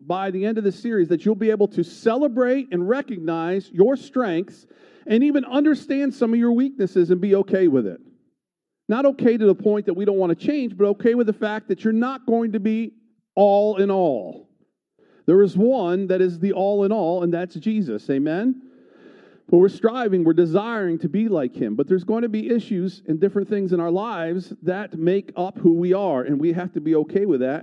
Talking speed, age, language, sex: 220 wpm, 50-69, English, male